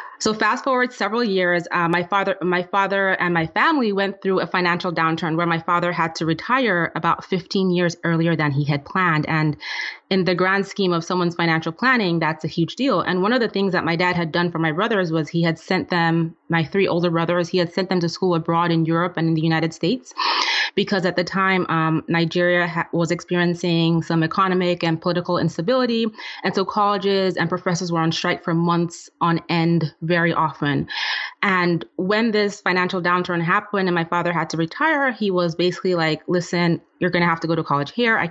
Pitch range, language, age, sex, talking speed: 165-190 Hz, English, 20-39, female, 210 wpm